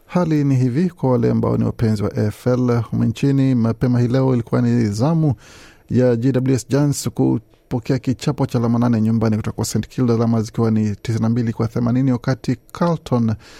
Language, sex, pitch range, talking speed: Swahili, male, 110-130 Hz, 160 wpm